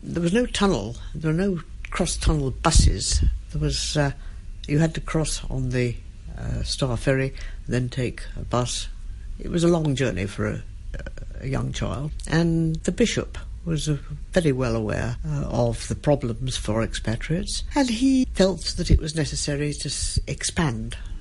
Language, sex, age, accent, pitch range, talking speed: English, female, 60-79, British, 100-155 Hz, 165 wpm